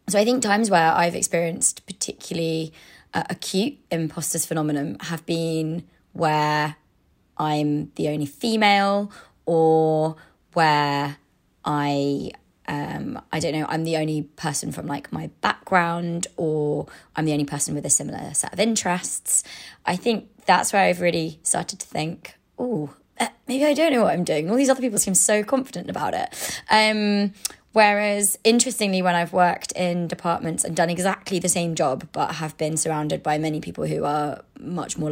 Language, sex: English, female